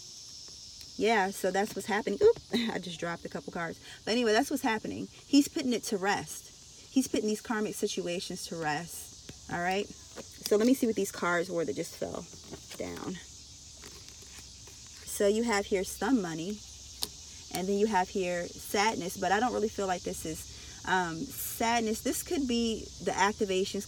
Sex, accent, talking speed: female, American, 175 wpm